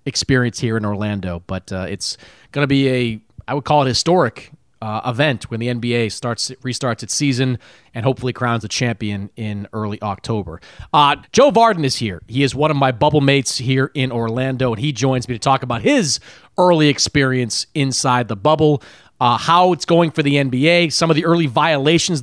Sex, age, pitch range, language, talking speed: male, 30-49, 125-165 Hz, English, 195 wpm